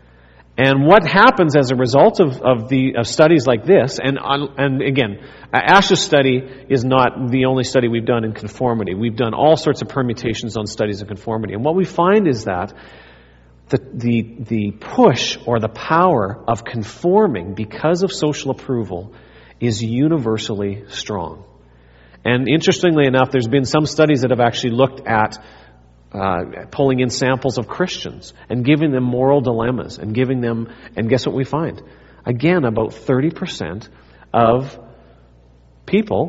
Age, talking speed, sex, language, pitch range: 40-59, 155 wpm, male, English, 105-140 Hz